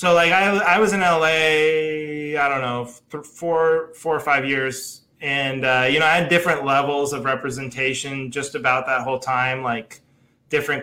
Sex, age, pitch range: male, 20-39, 130-175 Hz